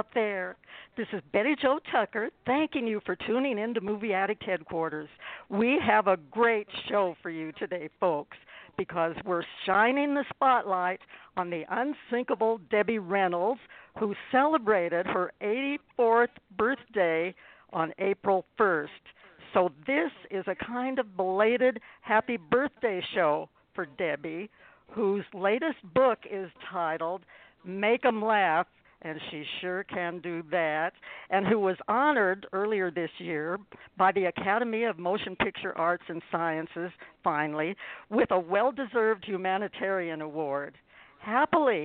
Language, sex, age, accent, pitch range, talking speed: English, female, 60-79, American, 180-235 Hz, 130 wpm